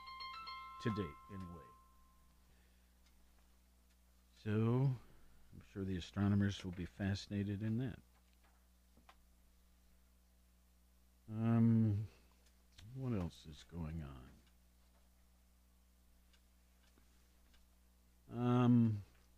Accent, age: American, 50-69